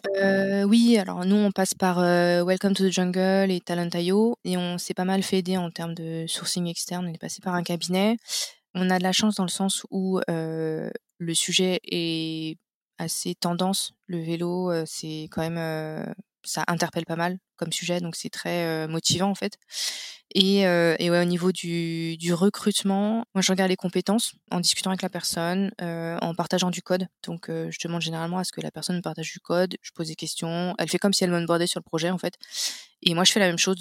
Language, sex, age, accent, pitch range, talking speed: French, female, 20-39, French, 170-195 Hz, 225 wpm